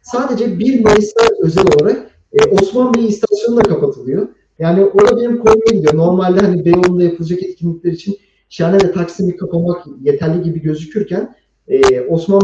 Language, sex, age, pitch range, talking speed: Turkish, male, 40-59, 160-235 Hz, 135 wpm